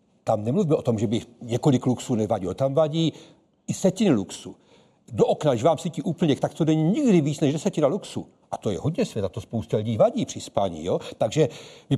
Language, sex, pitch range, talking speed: Czech, male, 140-185 Hz, 210 wpm